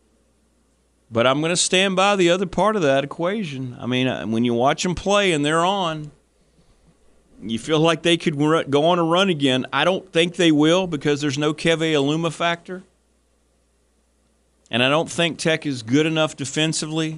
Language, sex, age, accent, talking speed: English, male, 40-59, American, 180 wpm